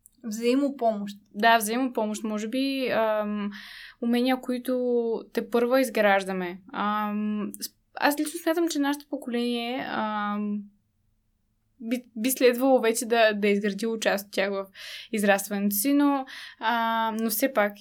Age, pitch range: 10-29, 210-245 Hz